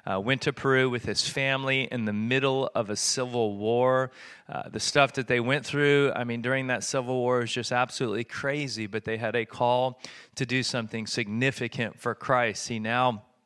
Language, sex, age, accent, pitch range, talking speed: English, male, 30-49, American, 115-135 Hz, 195 wpm